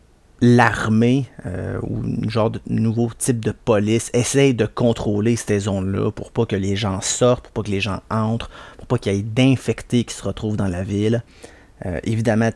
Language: French